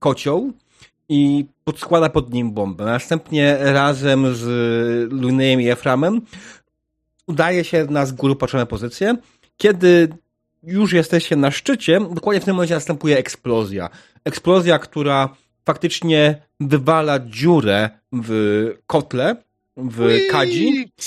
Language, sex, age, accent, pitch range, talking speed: Polish, male, 30-49, native, 115-165 Hz, 110 wpm